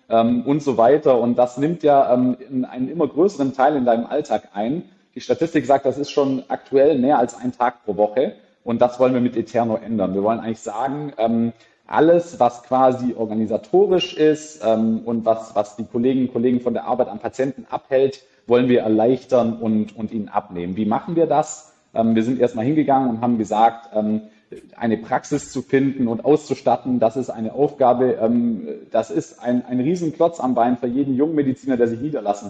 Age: 40-59